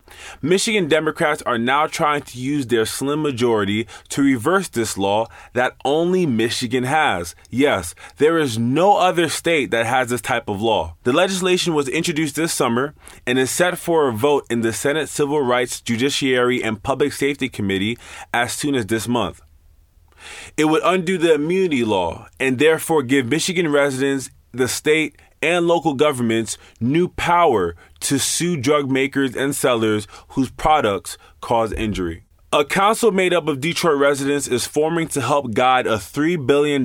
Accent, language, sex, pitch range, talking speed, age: American, English, male, 120-160 Hz, 165 wpm, 20-39